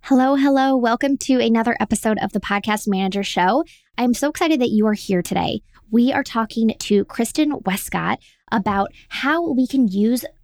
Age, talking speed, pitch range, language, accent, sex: 20-39, 170 wpm, 195-245 Hz, English, American, female